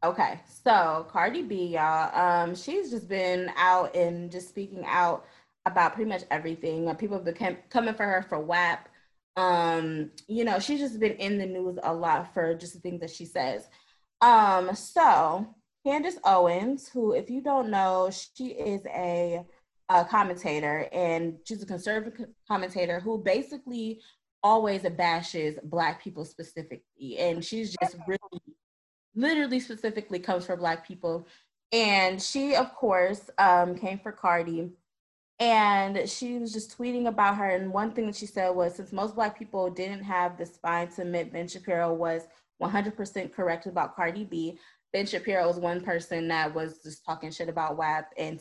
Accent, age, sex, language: American, 20-39, female, English